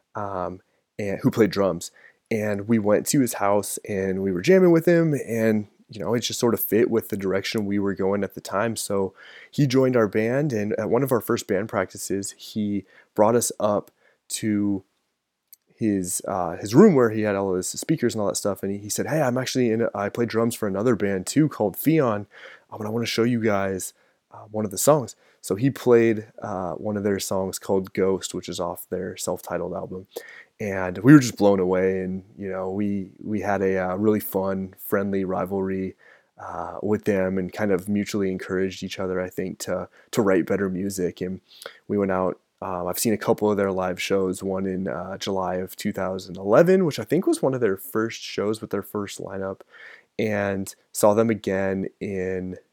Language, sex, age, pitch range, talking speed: English, male, 20-39, 95-110 Hz, 210 wpm